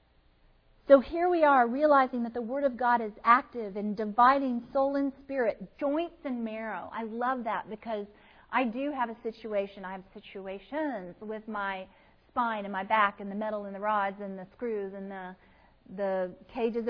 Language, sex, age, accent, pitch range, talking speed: English, female, 40-59, American, 205-270 Hz, 180 wpm